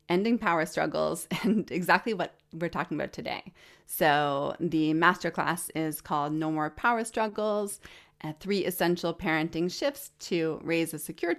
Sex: female